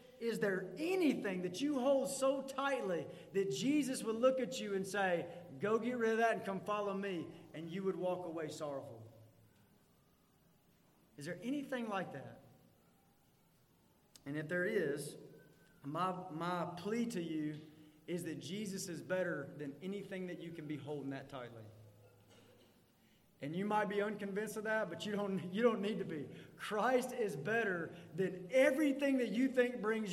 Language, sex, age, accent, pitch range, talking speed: English, male, 30-49, American, 180-270 Hz, 165 wpm